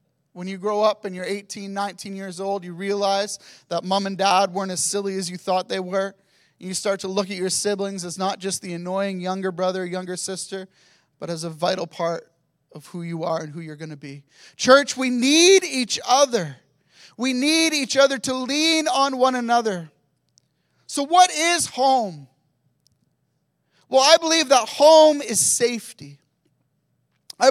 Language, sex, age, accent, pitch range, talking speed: English, male, 30-49, American, 185-275 Hz, 180 wpm